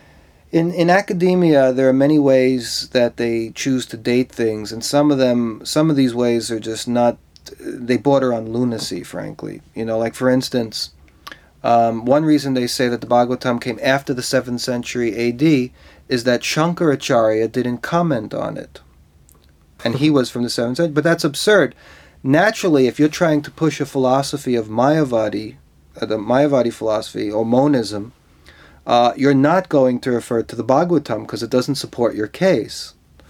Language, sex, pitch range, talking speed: Danish, male, 115-140 Hz, 175 wpm